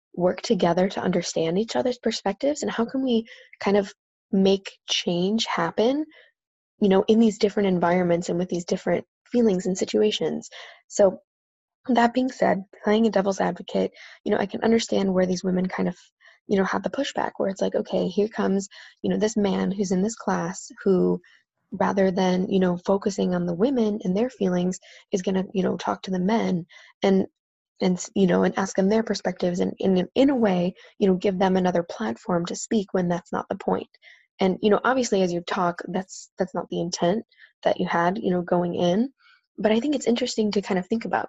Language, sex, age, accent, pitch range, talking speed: English, female, 20-39, American, 180-220 Hz, 210 wpm